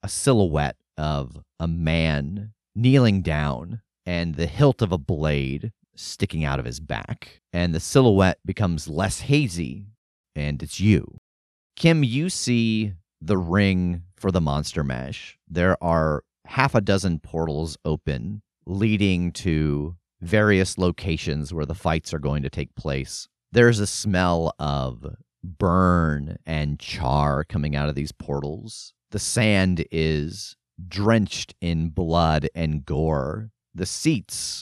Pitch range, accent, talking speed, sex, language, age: 80-105 Hz, American, 135 wpm, male, English, 30-49